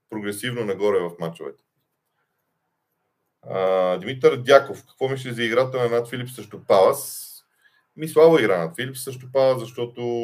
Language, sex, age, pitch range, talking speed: Bulgarian, male, 40-59, 105-150 Hz, 125 wpm